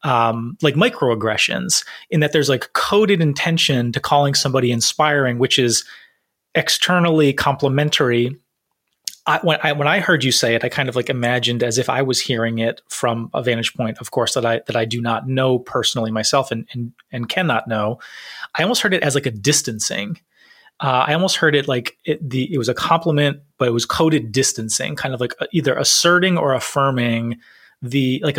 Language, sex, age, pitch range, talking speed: English, male, 30-49, 120-145 Hz, 190 wpm